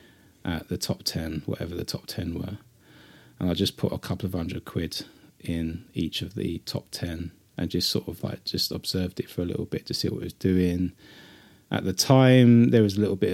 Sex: male